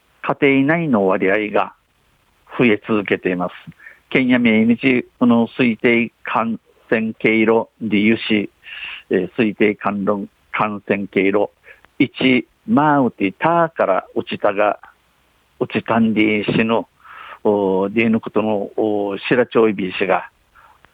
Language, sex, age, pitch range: Japanese, male, 50-69, 105-145 Hz